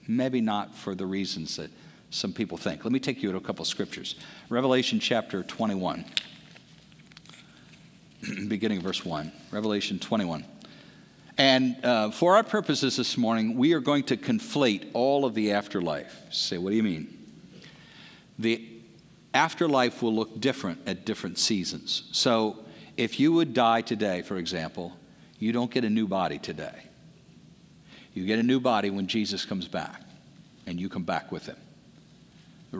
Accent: American